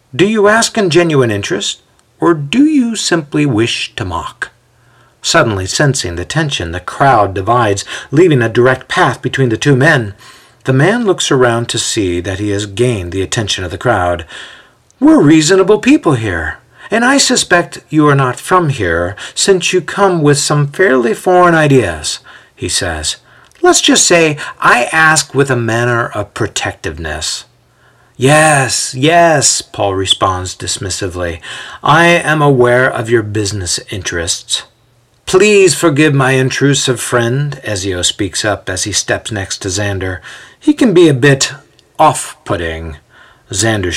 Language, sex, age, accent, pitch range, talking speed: English, male, 50-69, American, 105-160 Hz, 145 wpm